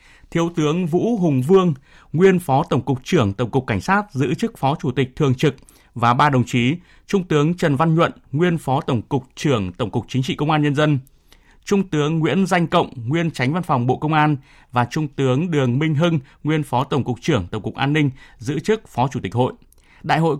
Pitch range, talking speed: 130-165 Hz, 230 wpm